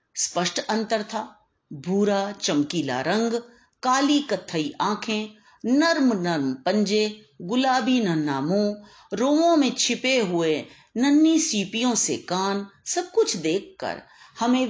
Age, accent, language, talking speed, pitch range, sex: 50-69, native, Hindi, 110 wpm, 170-265 Hz, female